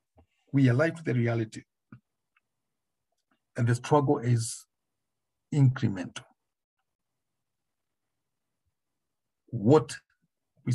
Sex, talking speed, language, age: male, 65 wpm, English, 60-79